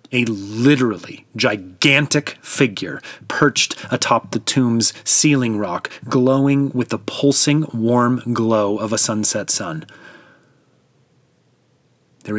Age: 30-49